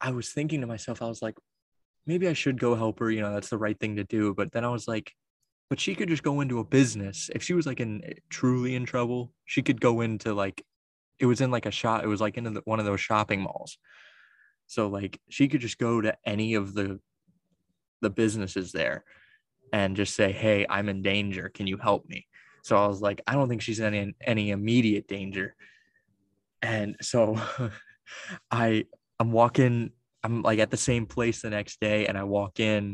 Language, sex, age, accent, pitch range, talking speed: English, male, 20-39, American, 105-130 Hz, 215 wpm